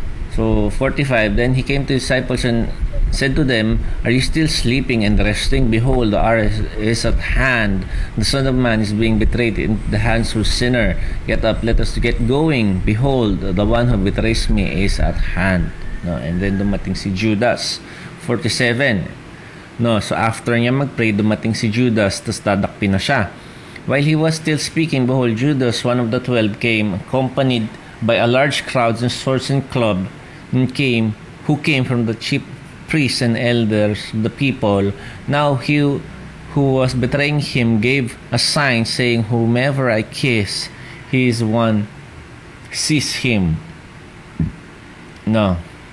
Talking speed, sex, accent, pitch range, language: 160 wpm, male, native, 105-130 Hz, Filipino